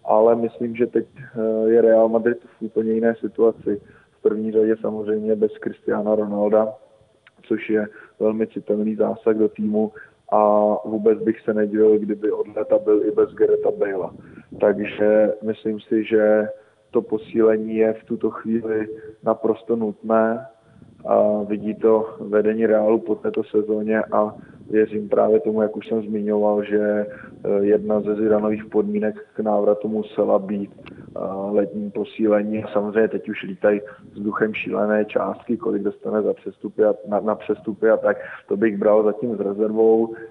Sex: male